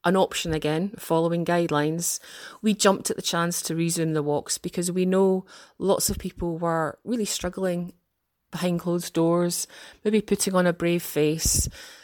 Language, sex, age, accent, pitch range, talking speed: English, female, 30-49, British, 170-205 Hz, 160 wpm